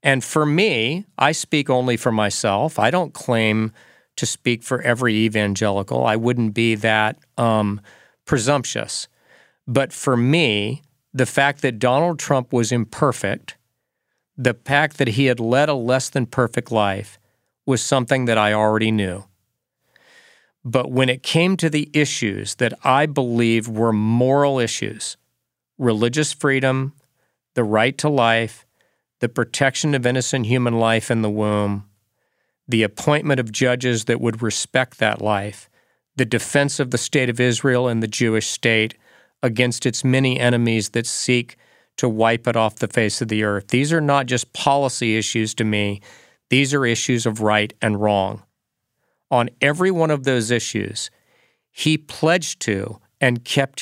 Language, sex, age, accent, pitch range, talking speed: English, male, 40-59, American, 110-135 Hz, 155 wpm